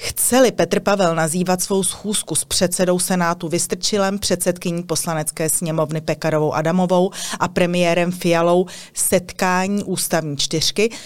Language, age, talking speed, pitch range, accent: Czech, 30-49, 115 wpm, 160-185 Hz, native